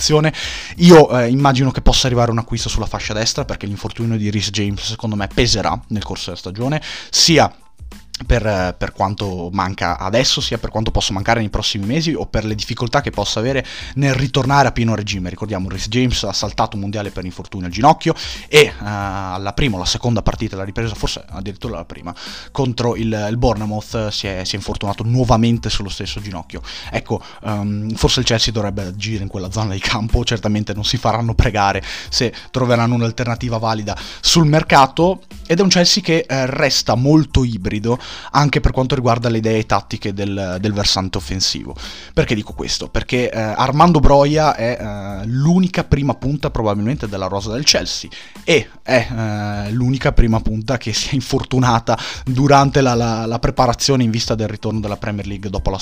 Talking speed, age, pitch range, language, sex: 180 wpm, 20-39, 100-125 Hz, Italian, male